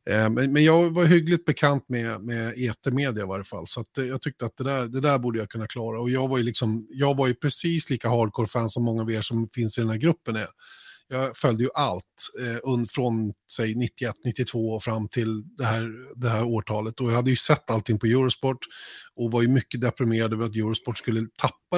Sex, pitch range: male, 110-130 Hz